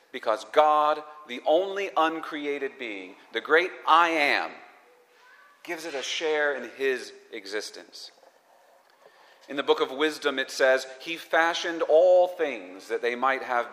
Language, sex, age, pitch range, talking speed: English, male, 40-59, 125-175 Hz, 140 wpm